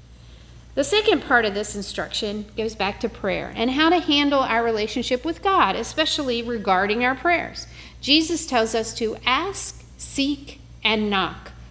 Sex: female